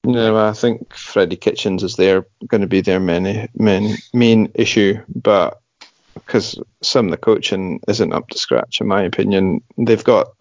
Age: 30-49